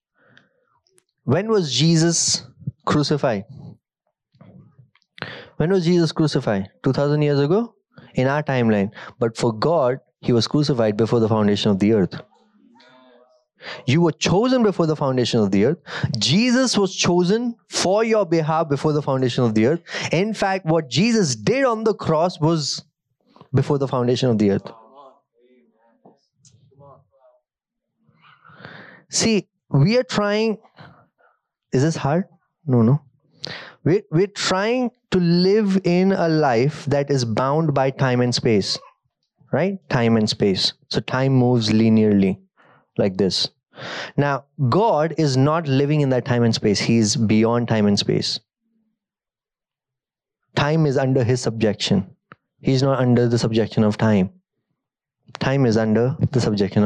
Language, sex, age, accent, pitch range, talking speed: English, male, 20-39, Indian, 120-170 Hz, 135 wpm